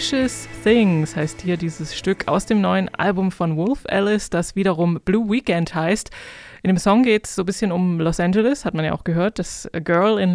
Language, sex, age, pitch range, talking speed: German, female, 20-39, 180-225 Hz, 215 wpm